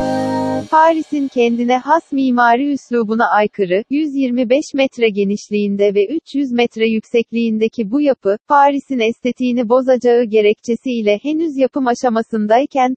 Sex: female